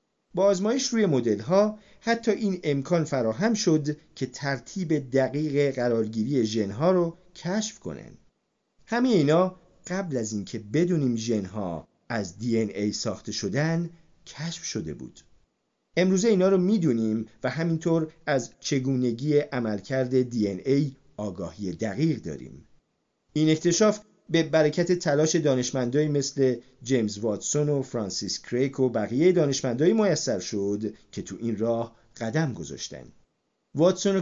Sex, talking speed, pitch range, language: male, 120 wpm, 115-175 Hz, Persian